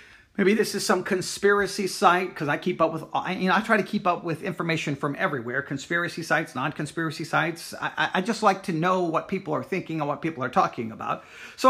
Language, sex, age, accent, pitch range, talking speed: English, male, 40-59, American, 160-215 Hz, 220 wpm